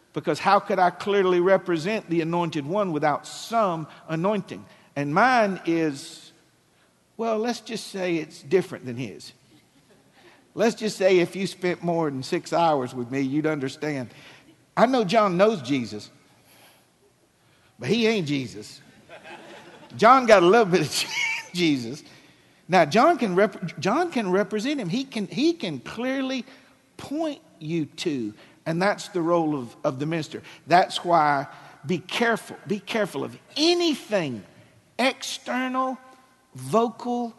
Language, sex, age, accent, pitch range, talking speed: English, male, 50-69, American, 150-215 Hz, 140 wpm